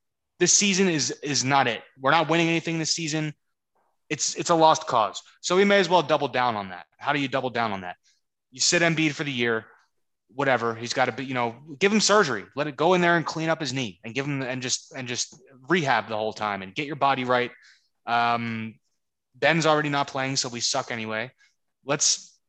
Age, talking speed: 20-39, 225 wpm